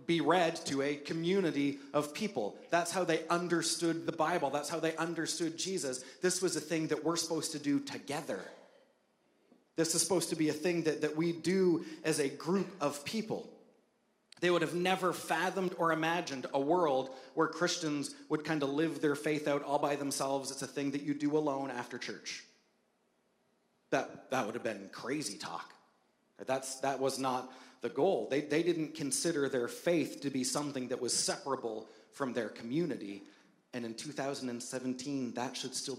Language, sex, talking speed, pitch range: English, male, 175 wpm, 130-165 Hz